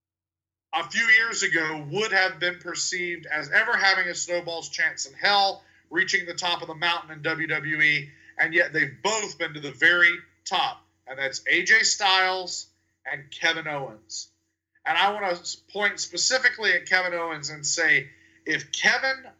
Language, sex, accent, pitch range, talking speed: English, male, American, 155-215 Hz, 165 wpm